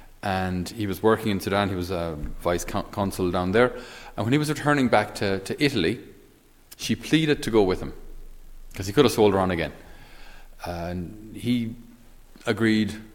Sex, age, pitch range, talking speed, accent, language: male, 30-49, 90-110 Hz, 185 wpm, Irish, English